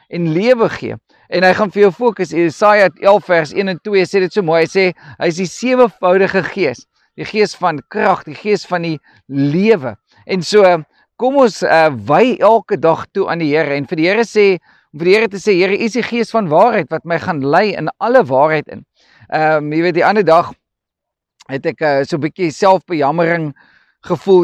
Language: English